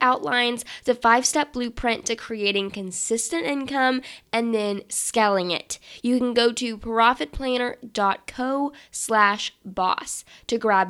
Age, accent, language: 10-29, American, English